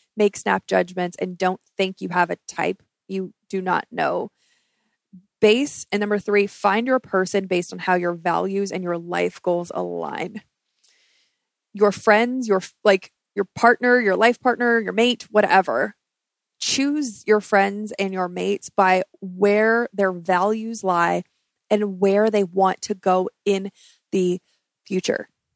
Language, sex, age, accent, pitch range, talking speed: English, female, 20-39, American, 190-225 Hz, 150 wpm